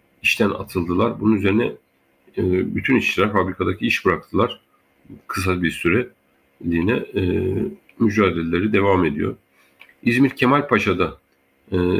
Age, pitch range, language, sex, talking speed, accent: 50-69, 80-110 Hz, Turkish, male, 90 wpm, native